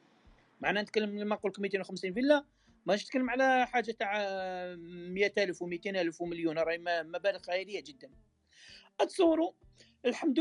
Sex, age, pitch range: male, 40-59, 200-280 Hz